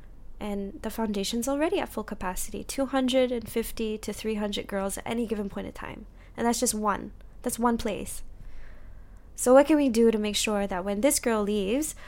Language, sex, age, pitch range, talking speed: English, female, 20-39, 190-245 Hz, 185 wpm